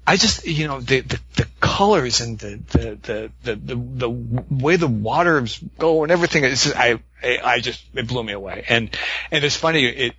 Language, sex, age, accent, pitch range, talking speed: English, male, 40-59, American, 105-150 Hz, 200 wpm